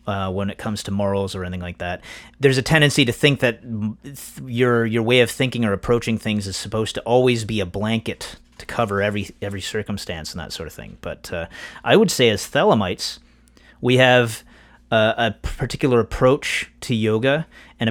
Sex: male